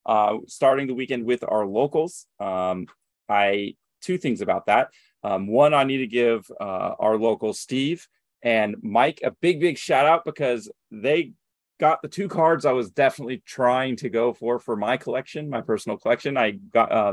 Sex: male